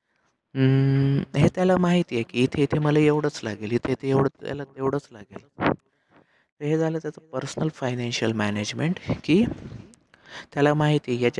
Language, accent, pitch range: Marathi, native, 120-145 Hz